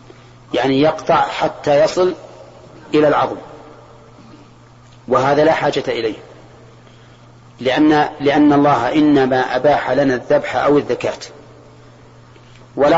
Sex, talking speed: male, 90 wpm